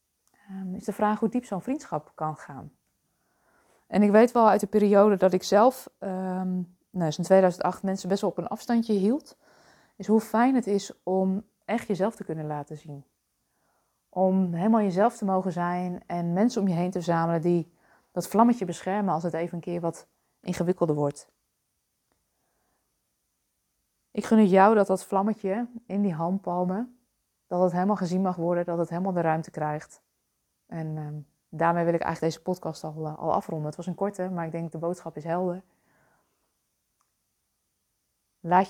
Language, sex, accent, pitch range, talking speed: Dutch, female, Dutch, 170-200 Hz, 175 wpm